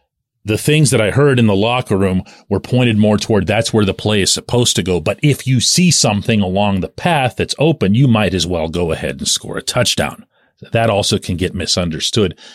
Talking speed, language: 220 wpm, English